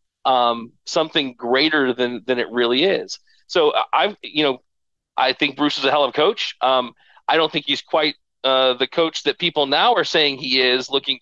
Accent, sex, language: American, male, English